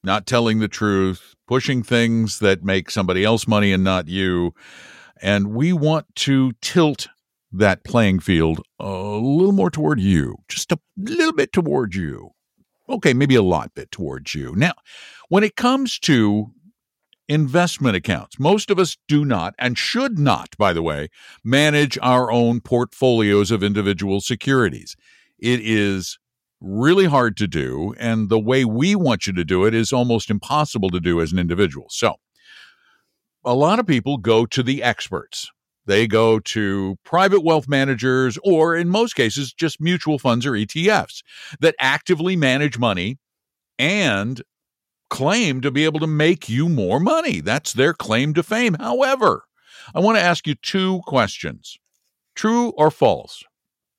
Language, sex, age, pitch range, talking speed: English, male, 60-79, 105-155 Hz, 160 wpm